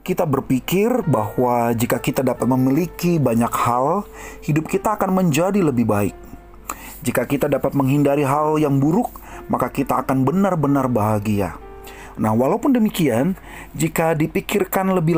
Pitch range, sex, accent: 125-185 Hz, male, native